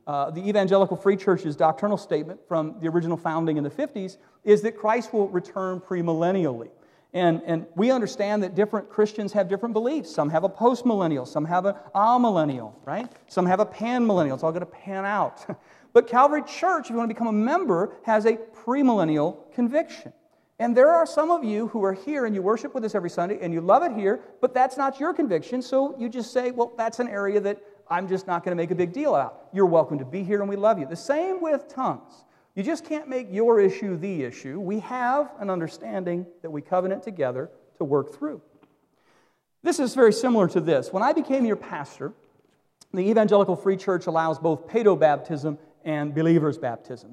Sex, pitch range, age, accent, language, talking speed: male, 165-235 Hz, 40-59, American, English, 205 wpm